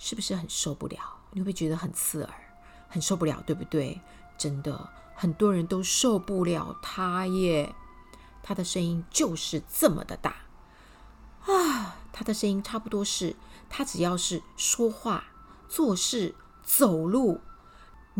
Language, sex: Chinese, female